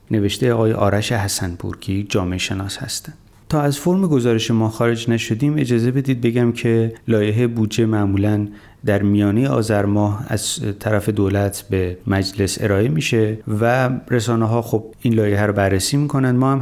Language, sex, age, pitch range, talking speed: Persian, male, 30-49, 100-120 Hz, 155 wpm